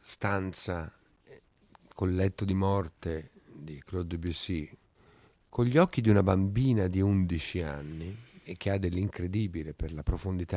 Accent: native